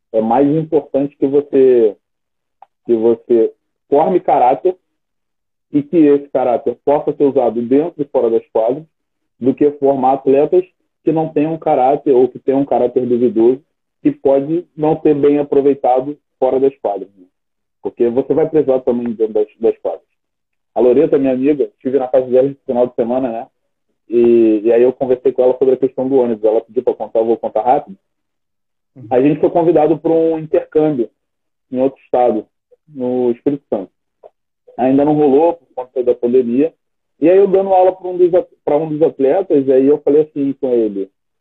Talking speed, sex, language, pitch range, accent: 175 wpm, male, Portuguese, 130-175 Hz, Brazilian